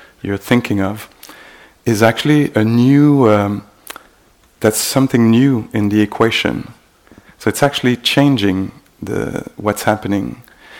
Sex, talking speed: male, 115 wpm